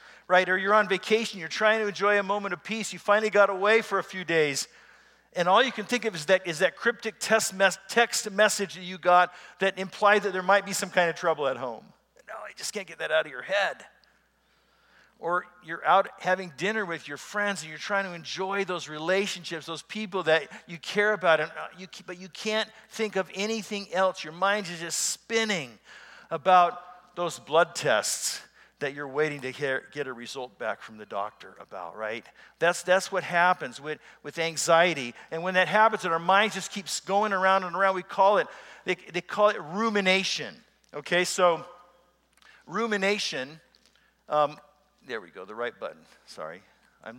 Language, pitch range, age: English, 165-200 Hz, 50-69